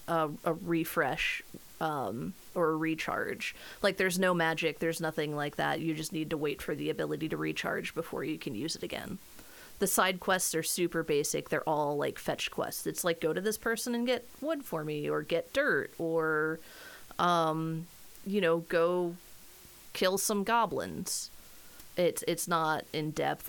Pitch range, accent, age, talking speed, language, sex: 160-190 Hz, American, 30-49, 175 wpm, English, female